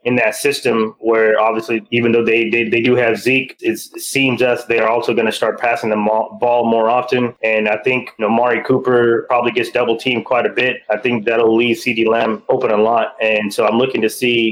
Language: English